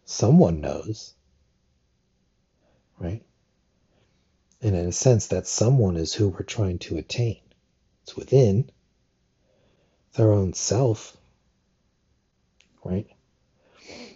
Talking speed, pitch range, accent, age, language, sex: 95 wpm, 85-105 Hz, American, 60-79, English, male